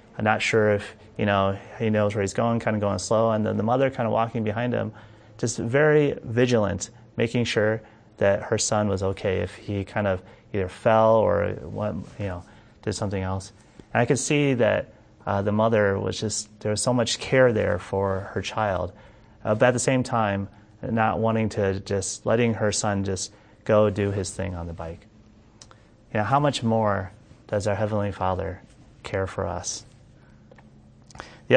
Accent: American